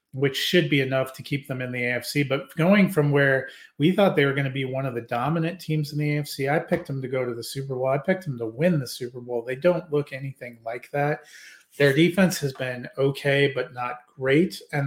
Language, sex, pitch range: English, male, 125-150 Hz